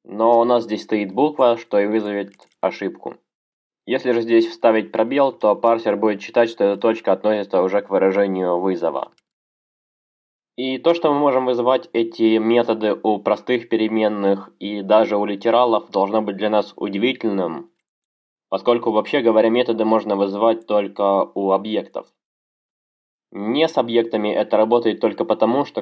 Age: 20-39